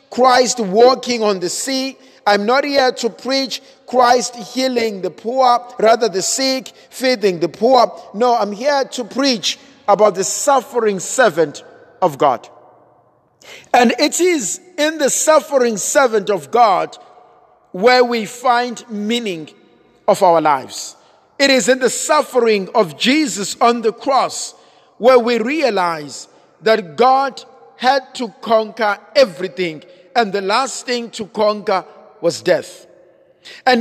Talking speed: 135 wpm